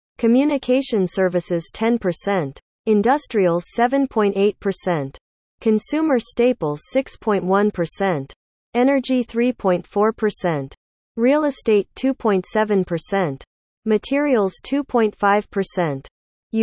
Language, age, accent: English, 40-59, American